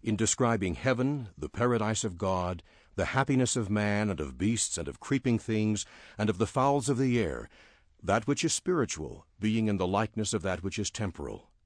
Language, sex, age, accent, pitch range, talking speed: English, male, 60-79, American, 95-125 Hz, 195 wpm